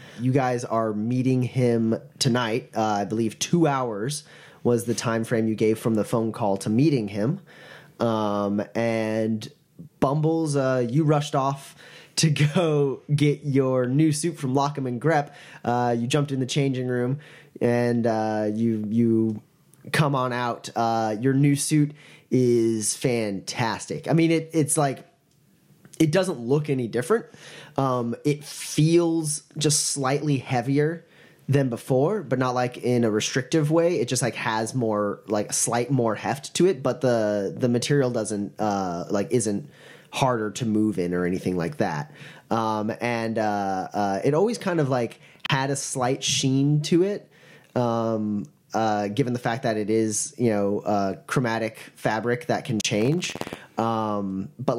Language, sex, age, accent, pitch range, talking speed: English, male, 10-29, American, 110-150 Hz, 160 wpm